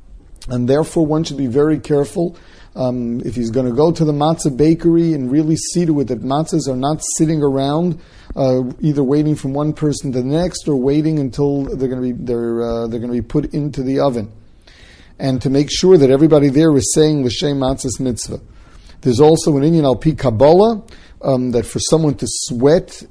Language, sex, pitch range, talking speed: English, male, 125-155 Hz, 205 wpm